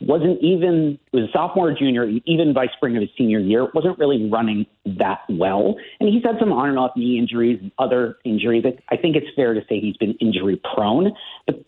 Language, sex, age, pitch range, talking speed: English, male, 50-69, 115-160 Hz, 205 wpm